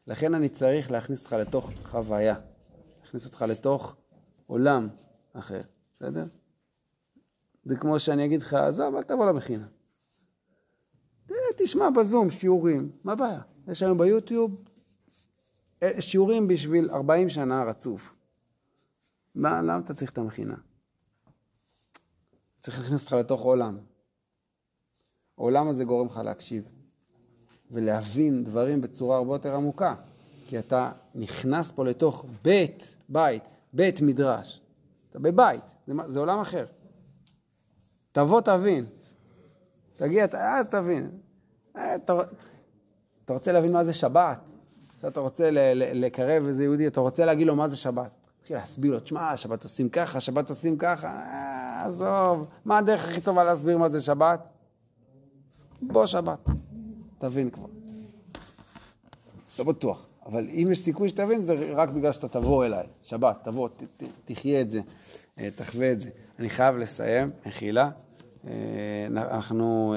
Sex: male